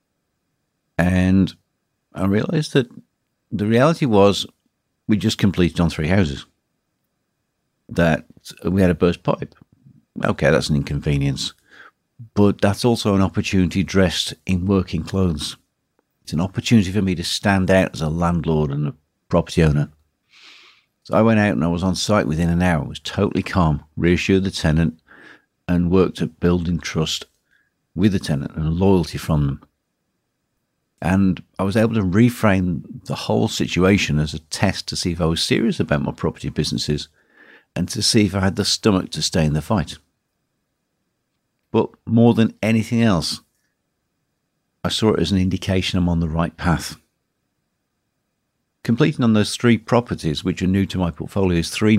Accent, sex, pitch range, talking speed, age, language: British, male, 80-105 Hz, 165 wpm, 60-79, English